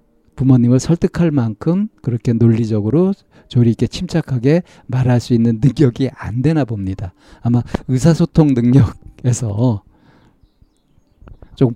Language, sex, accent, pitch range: Korean, male, native, 115-150 Hz